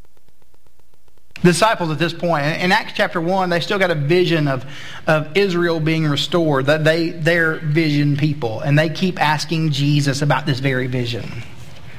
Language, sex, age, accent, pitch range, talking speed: English, male, 40-59, American, 160-270 Hz, 155 wpm